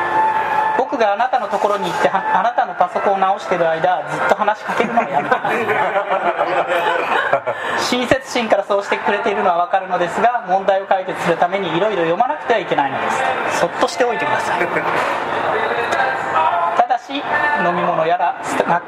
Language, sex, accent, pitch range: Japanese, male, native, 190-255 Hz